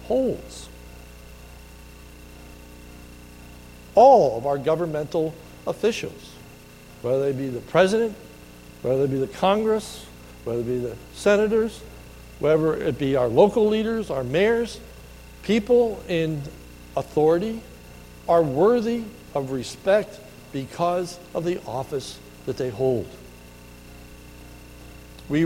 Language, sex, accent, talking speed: English, male, American, 105 wpm